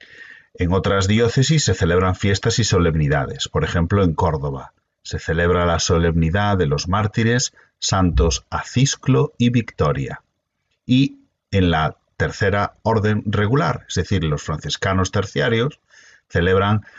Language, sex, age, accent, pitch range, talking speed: Spanish, male, 40-59, Spanish, 85-125 Hz, 125 wpm